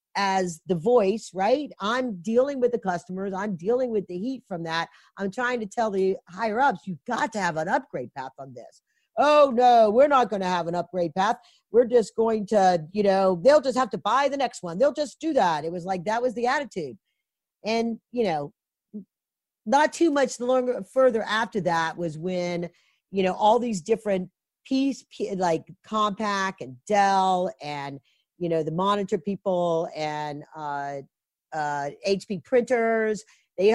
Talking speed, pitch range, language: 180 wpm, 180-240 Hz, English